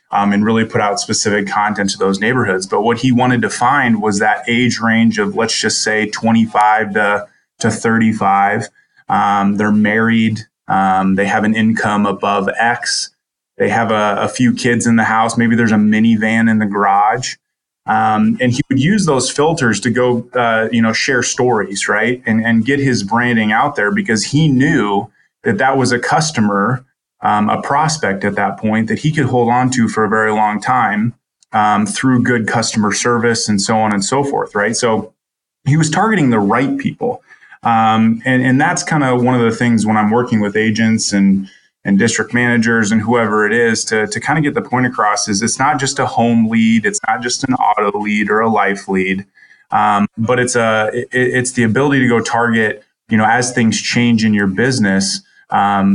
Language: English